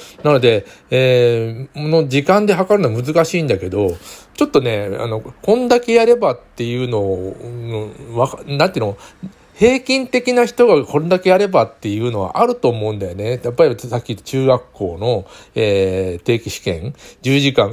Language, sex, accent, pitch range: Japanese, male, native, 105-175 Hz